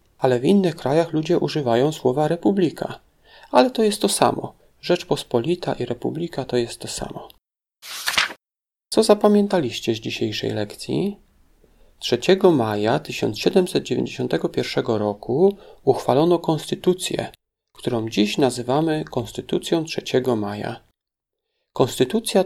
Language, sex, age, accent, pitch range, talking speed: Polish, male, 40-59, native, 120-175 Hz, 100 wpm